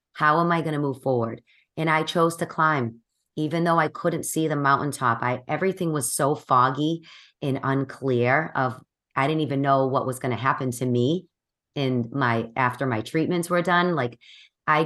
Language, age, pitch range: English, 40-59, 125-155 Hz